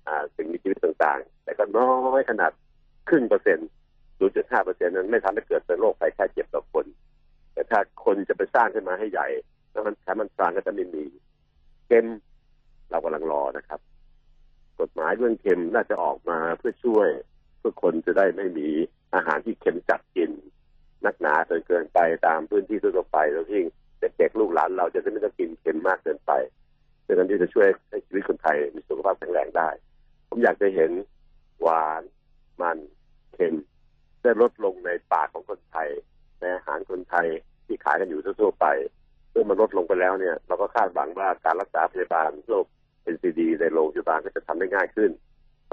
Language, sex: Thai, male